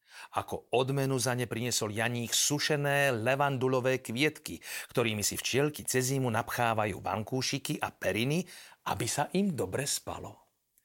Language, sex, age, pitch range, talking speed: Slovak, male, 40-59, 115-145 Hz, 125 wpm